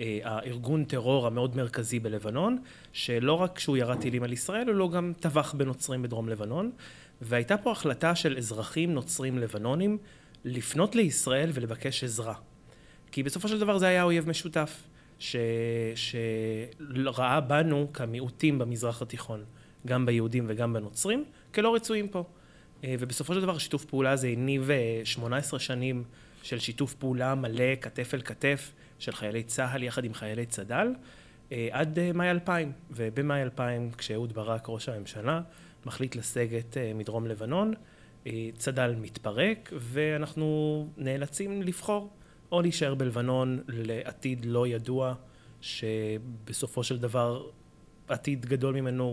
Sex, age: male, 30-49